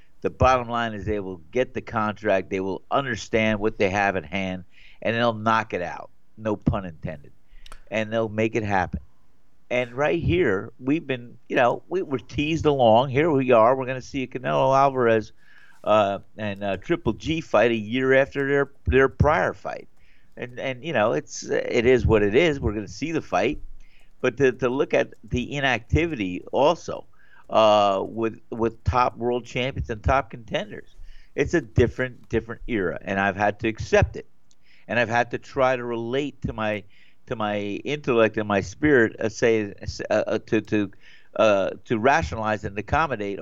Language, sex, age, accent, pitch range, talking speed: English, male, 50-69, American, 100-125 Hz, 185 wpm